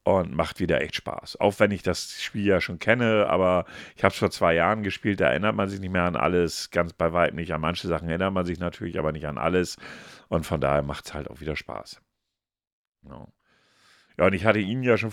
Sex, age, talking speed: male, 50-69, 240 wpm